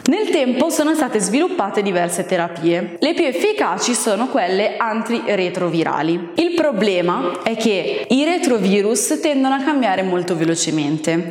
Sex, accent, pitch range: female, native, 180-290 Hz